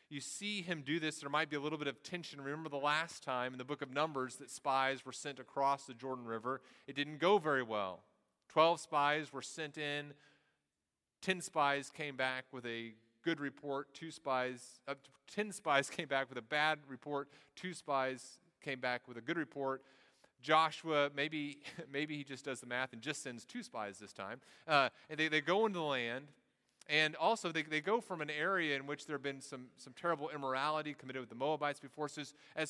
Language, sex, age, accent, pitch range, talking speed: English, male, 30-49, American, 125-155 Hz, 210 wpm